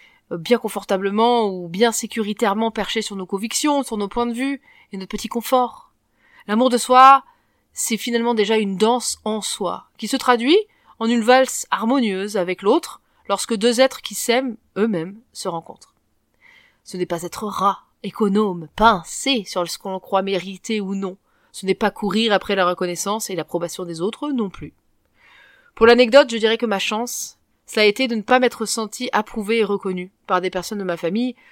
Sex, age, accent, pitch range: female, 30-49, French, 195-250 Hz